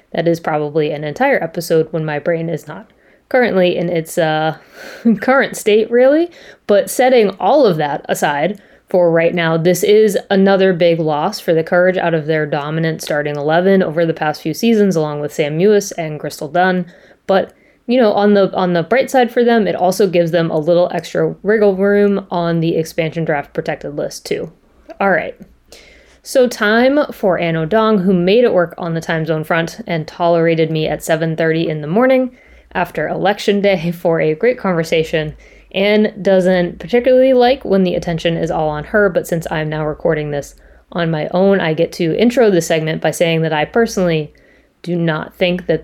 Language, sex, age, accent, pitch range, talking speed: English, female, 20-39, American, 160-205 Hz, 190 wpm